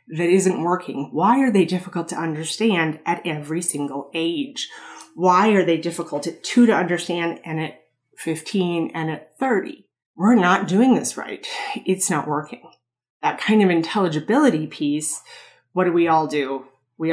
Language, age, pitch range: English, 30-49, 155-190 Hz